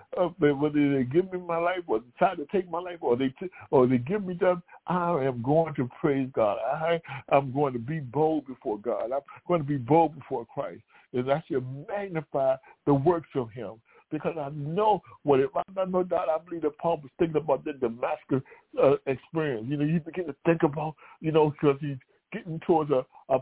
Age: 60-79